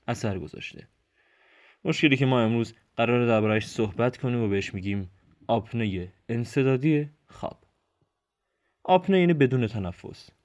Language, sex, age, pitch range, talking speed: Persian, male, 20-39, 105-140 Hz, 120 wpm